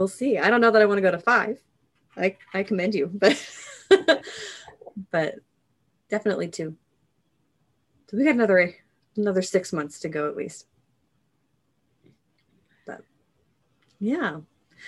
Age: 20-39